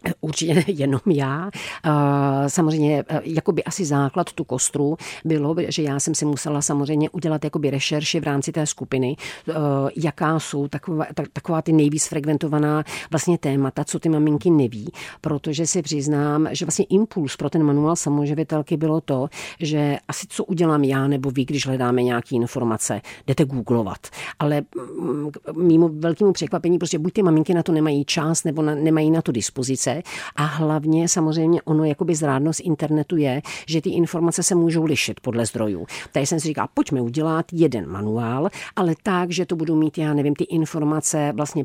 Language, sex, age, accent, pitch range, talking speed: Czech, female, 50-69, native, 140-160 Hz, 165 wpm